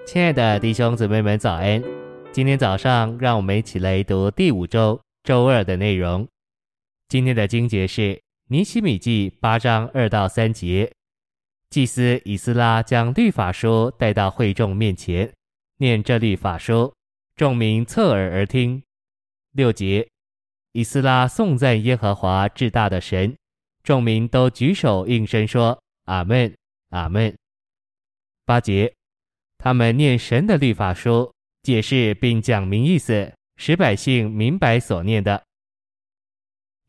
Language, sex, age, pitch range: Chinese, male, 20-39, 100-125 Hz